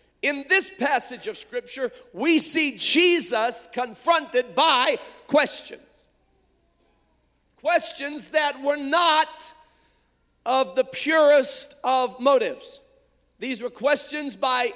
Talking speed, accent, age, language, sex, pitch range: 100 wpm, American, 40-59, English, male, 250-315 Hz